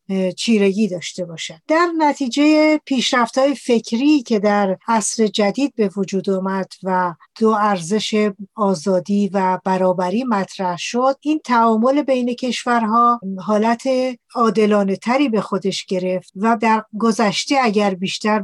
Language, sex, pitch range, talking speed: Persian, female, 195-245 Hz, 115 wpm